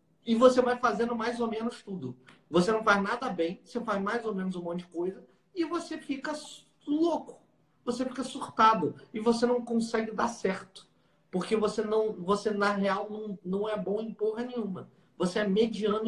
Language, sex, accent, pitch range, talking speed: Portuguese, male, Brazilian, 180-230 Hz, 185 wpm